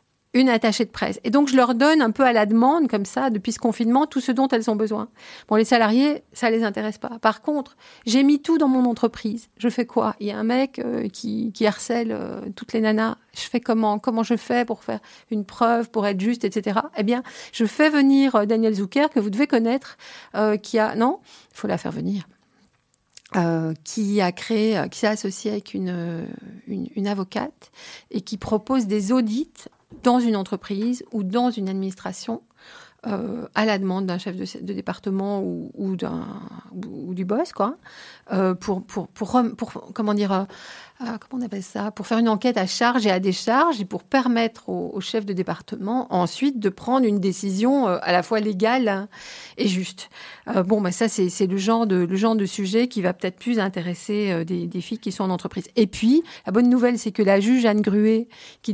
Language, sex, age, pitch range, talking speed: French, female, 50-69, 195-240 Hz, 210 wpm